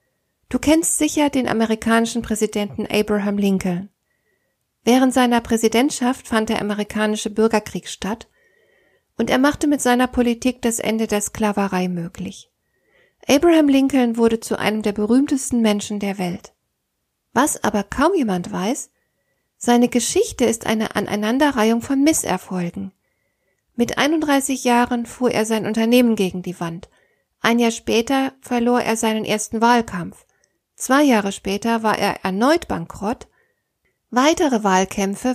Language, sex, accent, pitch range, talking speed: German, female, German, 205-265 Hz, 130 wpm